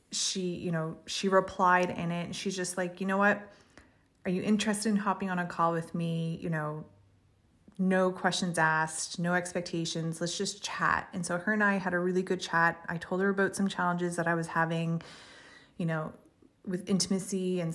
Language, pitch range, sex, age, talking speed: English, 170-205 Hz, female, 30-49, 195 wpm